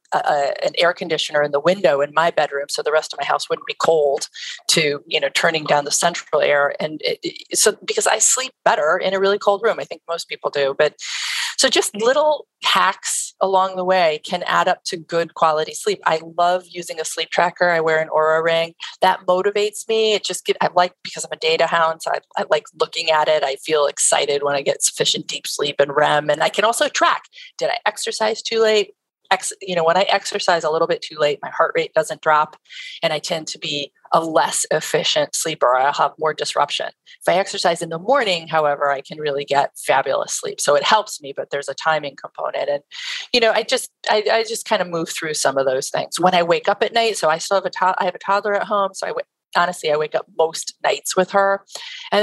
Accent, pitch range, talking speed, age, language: American, 155-210 Hz, 240 wpm, 30-49, English